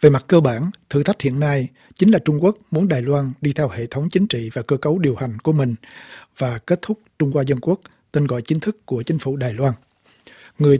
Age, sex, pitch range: 60-79, male, 130-165 Hz